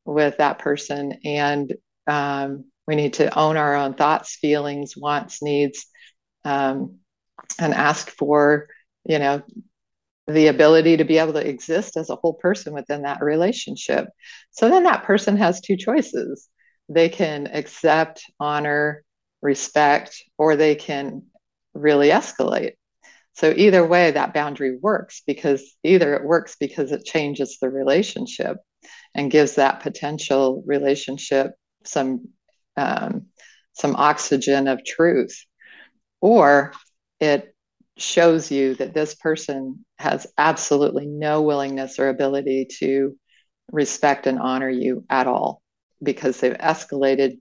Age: 50-69